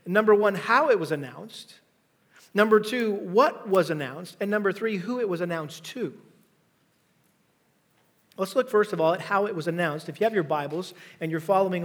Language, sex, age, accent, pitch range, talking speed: English, male, 40-59, American, 170-225 Hz, 185 wpm